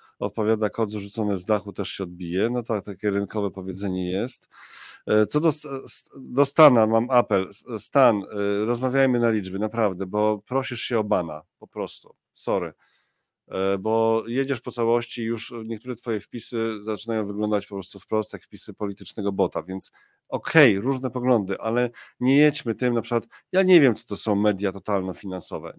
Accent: native